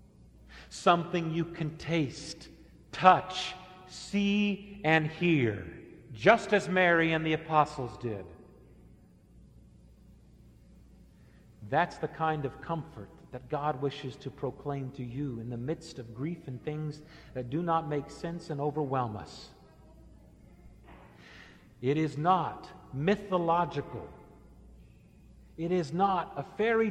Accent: American